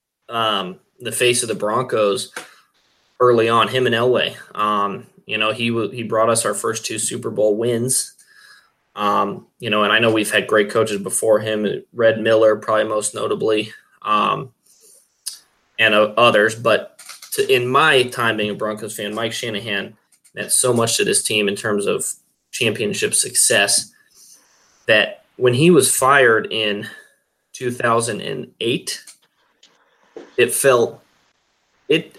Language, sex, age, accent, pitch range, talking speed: English, male, 20-39, American, 110-130 Hz, 145 wpm